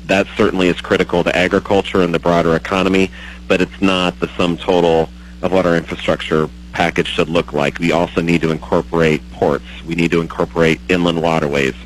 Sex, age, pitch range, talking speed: male, 40-59, 80-95 Hz, 180 wpm